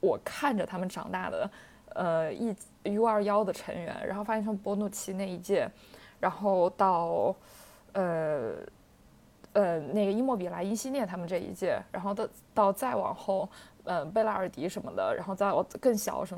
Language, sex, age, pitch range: Chinese, female, 20-39, 180-220 Hz